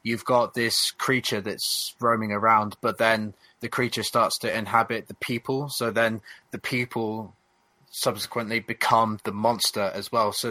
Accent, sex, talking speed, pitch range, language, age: British, male, 155 wpm, 110-125 Hz, English, 20-39